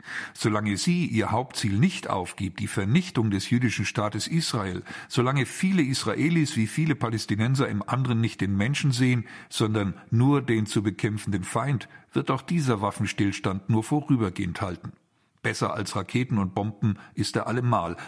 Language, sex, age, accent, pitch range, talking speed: German, male, 50-69, German, 105-130 Hz, 150 wpm